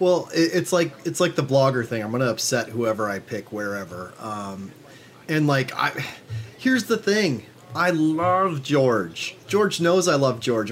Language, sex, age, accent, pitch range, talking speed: English, male, 30-49, American, 120-165 Hz, 175 wpm